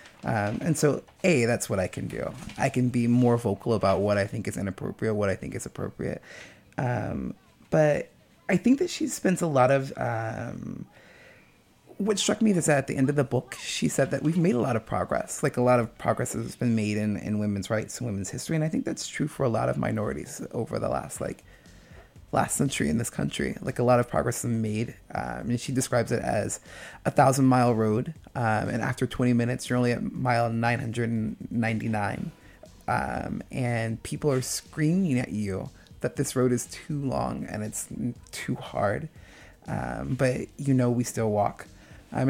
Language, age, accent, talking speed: English, 30-49, American, 205 wpm